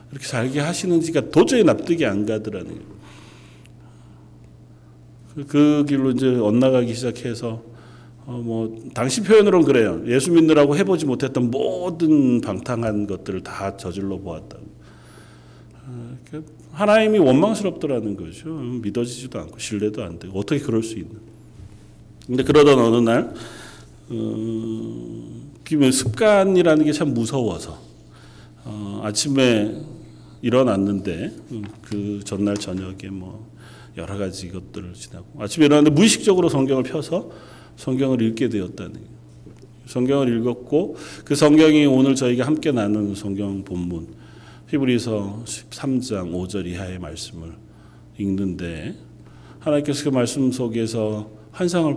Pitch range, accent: 100-140 Hz, native